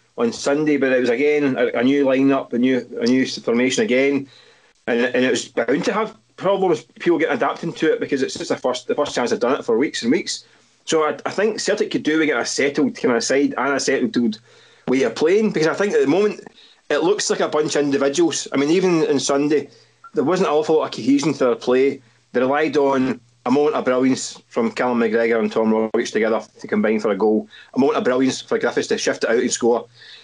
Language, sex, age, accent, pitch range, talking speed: English, male, 30-49, British, 125-155 Hz, 245 wpm